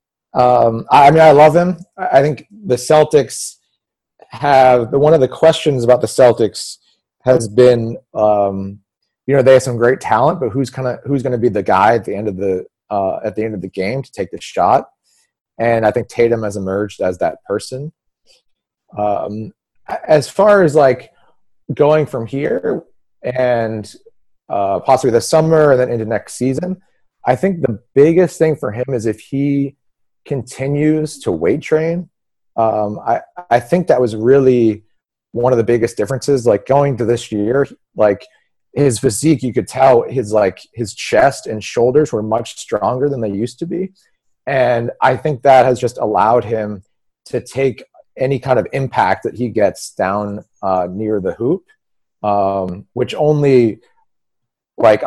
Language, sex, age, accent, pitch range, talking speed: English, male, 30-49, American, 110-145 Hz, 170 wpm